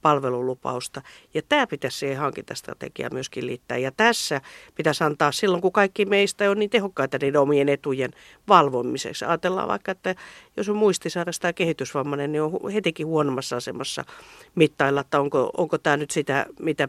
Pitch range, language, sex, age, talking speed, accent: 135-180 Hz, Finnish, female, 50-69, 155 wpm, native